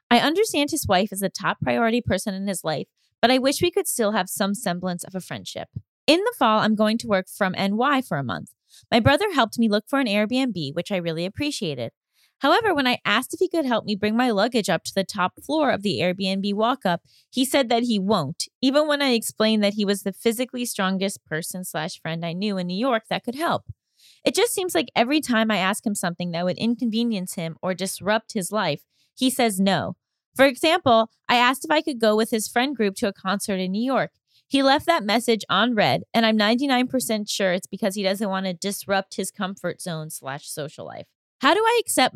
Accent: American